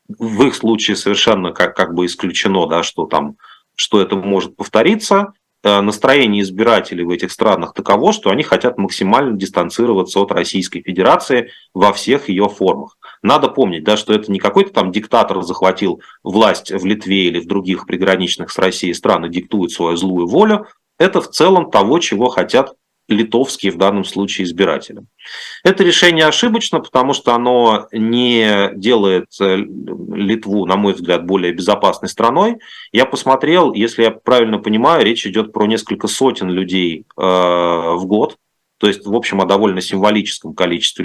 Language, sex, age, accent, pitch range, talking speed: Russian, male, 30-49, native, 90-115 Hz, 155 wpm